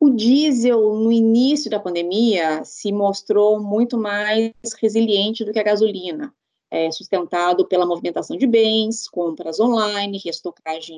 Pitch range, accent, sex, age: 190-240 Hz, Brazilian, female, 20-39